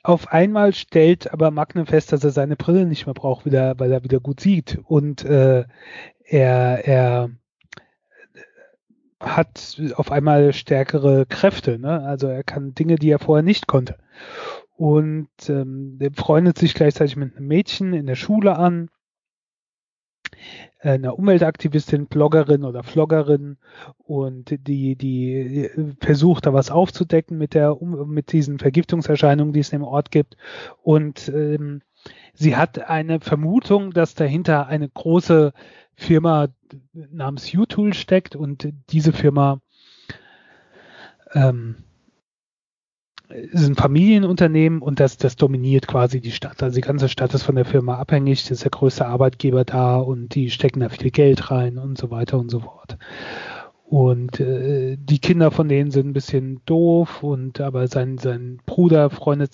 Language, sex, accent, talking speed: German, male, German, 145 wpm